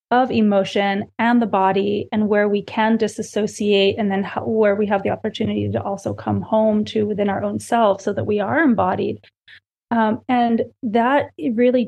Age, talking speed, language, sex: 30-49, 180 wpm, English, female